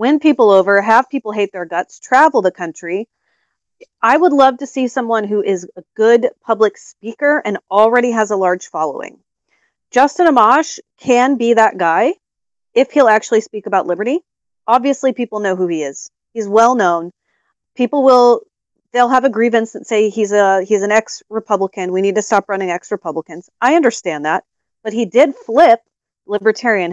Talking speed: 170 wpm